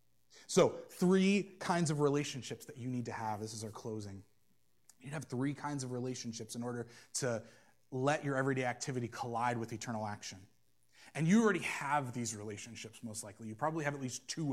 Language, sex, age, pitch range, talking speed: English, male, 30-49, 115-150 Hz, 195 wpm